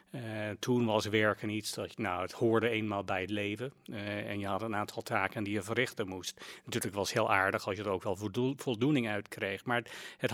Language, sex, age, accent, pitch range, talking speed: English, male, 40-59, Dutch, 105-120 Hz, 245 wpm